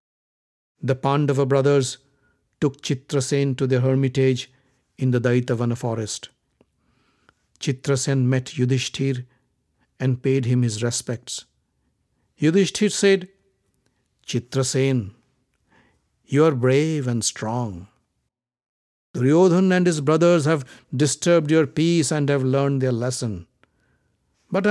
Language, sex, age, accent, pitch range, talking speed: English, male, 50-69, Indian, 125-155 Hz, 100 wpm